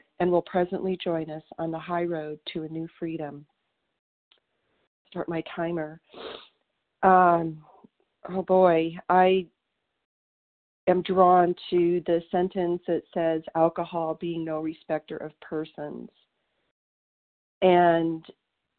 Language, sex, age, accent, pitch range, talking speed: English, female, 40-59, American, 165-185 Hz, 110 wpm